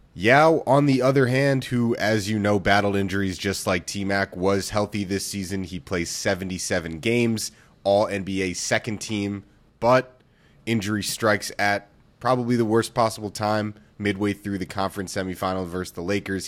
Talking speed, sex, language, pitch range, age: 155 wpm, male, English, 95-110 Hz, 30-49